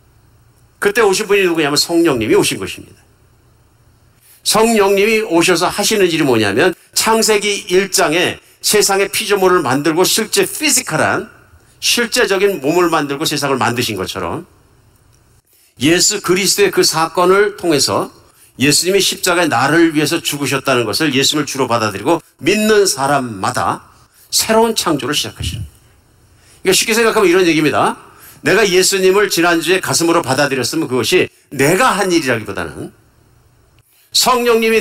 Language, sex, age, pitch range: Korean, male, 50-69, 120-190 Hz